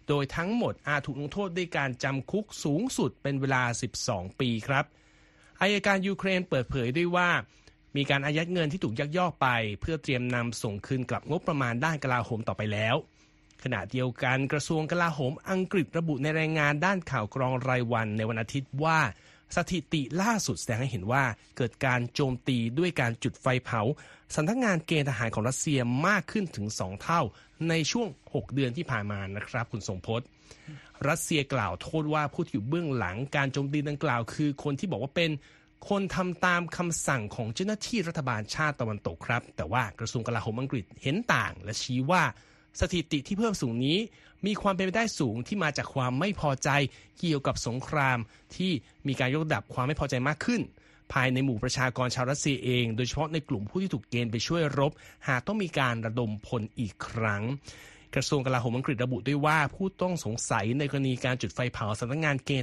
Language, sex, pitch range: Thai, male, 120-160 Hz